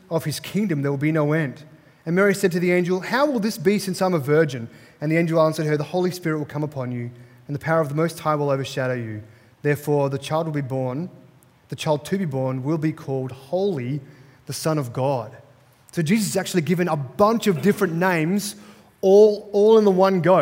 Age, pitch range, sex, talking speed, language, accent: 30-49, 140-190 Hz, male, 230 wpm, English, Australian